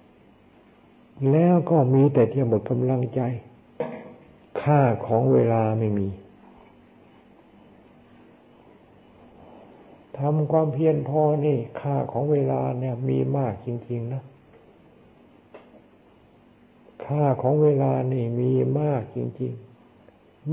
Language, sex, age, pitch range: Thai, male, 60-79, 115-140 Hz